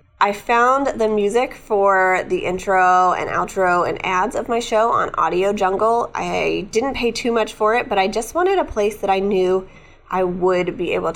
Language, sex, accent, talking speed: English, female, American, 200 wpm